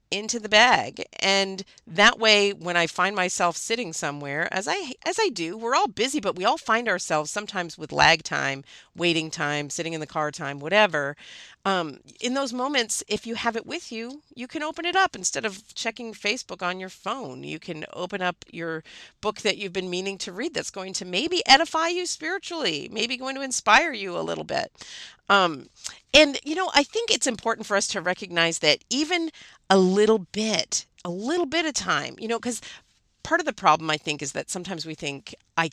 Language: English